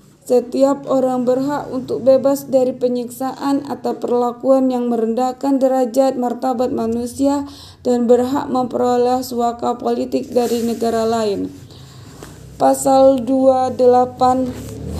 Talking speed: 95 wpm